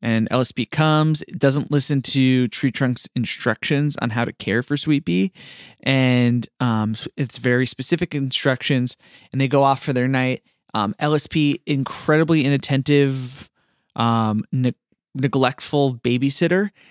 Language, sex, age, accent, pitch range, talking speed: English, male, 20-39, American, 115-135 Hz, 130 wpm